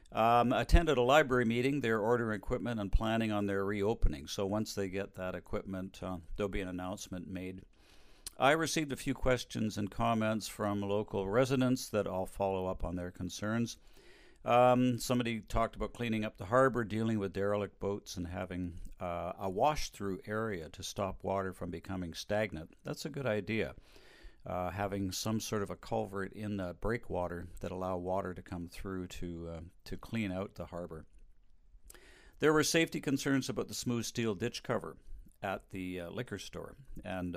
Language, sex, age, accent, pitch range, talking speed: English, male, 50-69, American, 90-115 Hz, 175 wpm